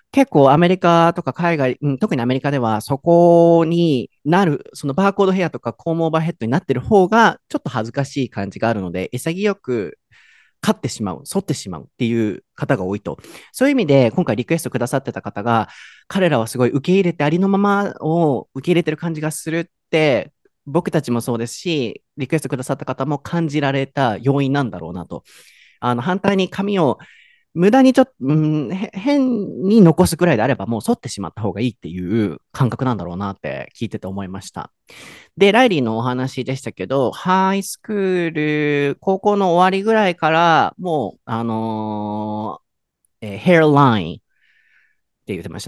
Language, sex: Japanese, male